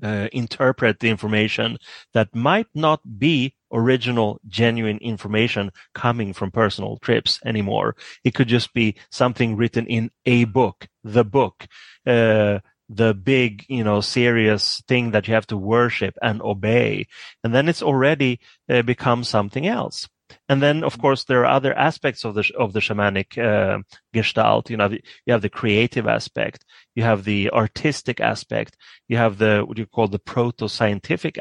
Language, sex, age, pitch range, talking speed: English, male, 30-49, 105-125 Hz, 165 wpm